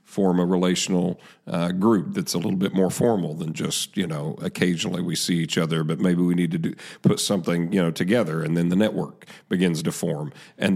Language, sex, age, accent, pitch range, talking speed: English, male, 40-59, American, 85-100 Hz, 220 wpm